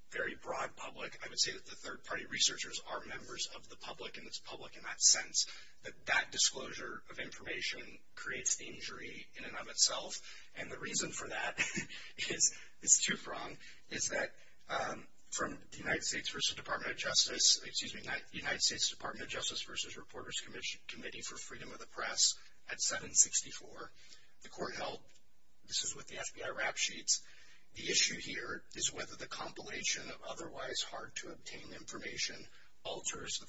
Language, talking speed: English, 170 wpm